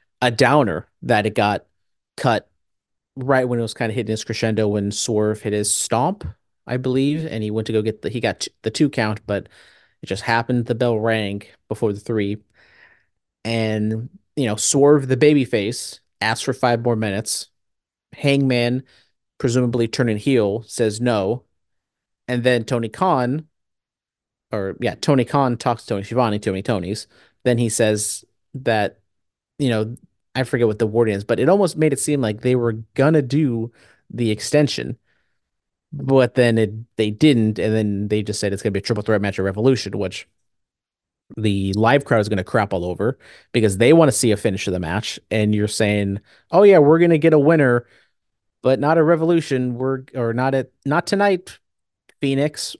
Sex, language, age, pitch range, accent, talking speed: male, English, 30-49, 105-130 Hz, American, 190 wpm